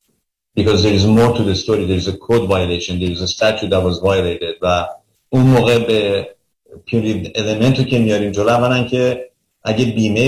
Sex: male